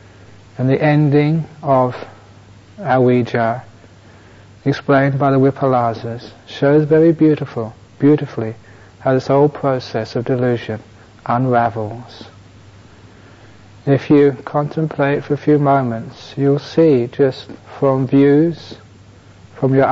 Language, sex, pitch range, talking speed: English, male, 105-140 Hz, 100 wpm